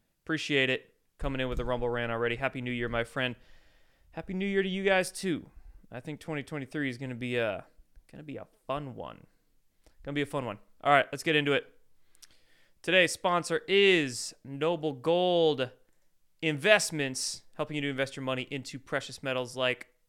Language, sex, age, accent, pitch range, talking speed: English, male, 20-39, American, 125-150 Hz, 185 wpm